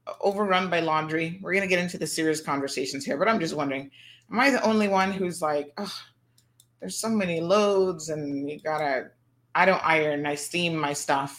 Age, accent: 30-49, American